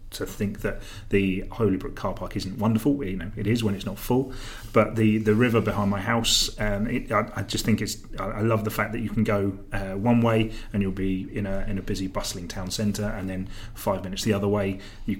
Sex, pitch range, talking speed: male, 95-110 Hz, 240 wpm